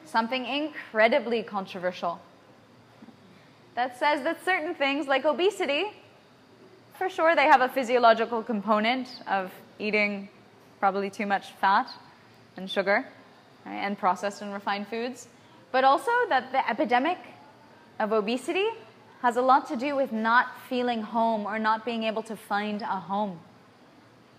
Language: English